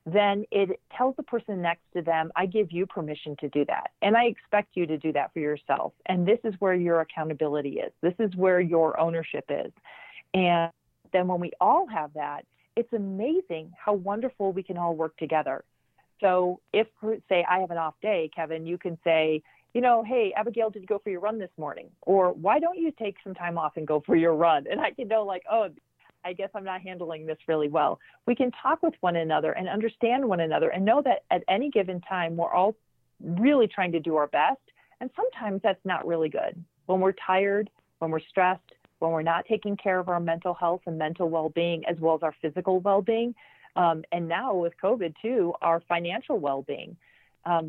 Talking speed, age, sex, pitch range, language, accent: 215 wpm, 40-59, female, 165-210 Hz, English, American